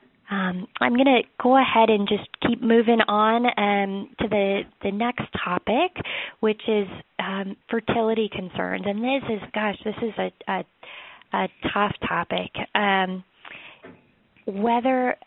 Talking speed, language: 140 wpm, English